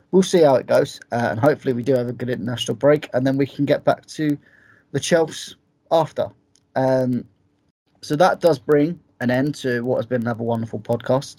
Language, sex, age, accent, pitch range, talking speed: English, male, 20-39, British, 110-130 Hz, 205 wpm